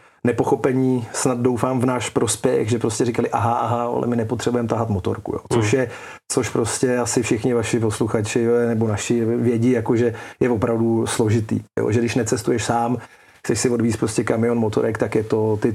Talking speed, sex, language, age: 185 wpm, male, Czech, 40-59